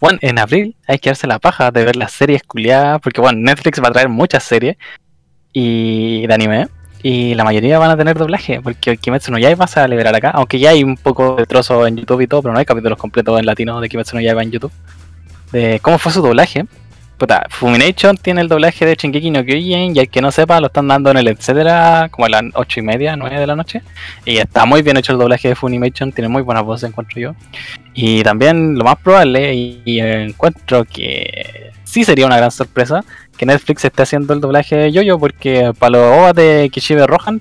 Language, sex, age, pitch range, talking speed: Spanish, male, 20-39, 115-155 Hz, 235 wpm